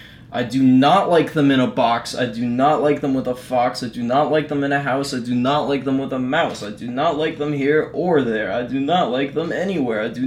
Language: English